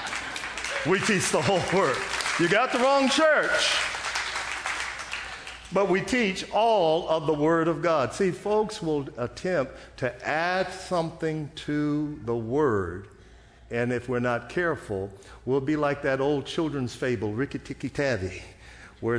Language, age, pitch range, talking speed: English, 50-69, 115-160 Hz, 135 wpm